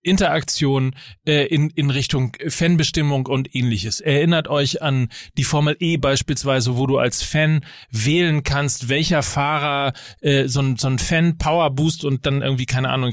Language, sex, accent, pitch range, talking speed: German, male, German, 140-170 Hz, 165 wpm